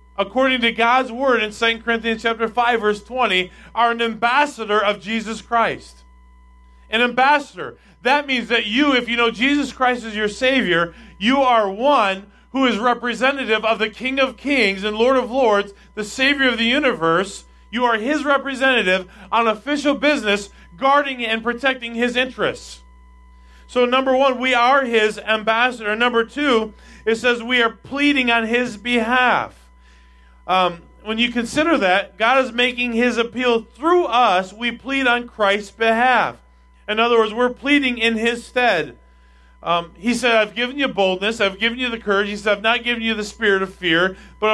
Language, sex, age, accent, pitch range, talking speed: English, male, 40-59, American, 200-245 Hz, 170 wpm